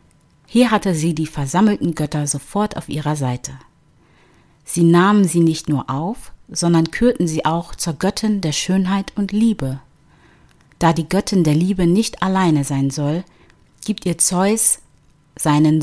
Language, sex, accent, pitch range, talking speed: German, female, German, 150-190 Hz, 150 wpm